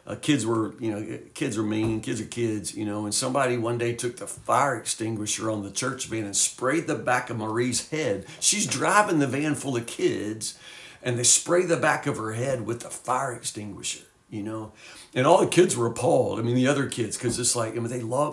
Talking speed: 230 wpm